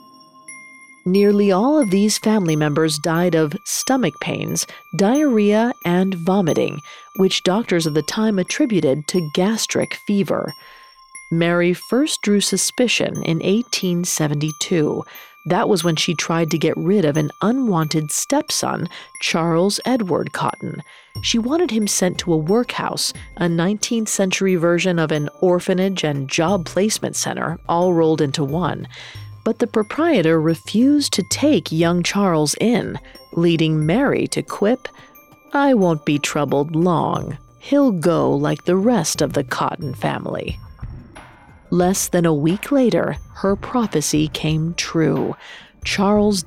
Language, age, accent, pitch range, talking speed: English, 40-59, American, 160-225 Hz, 130 wpm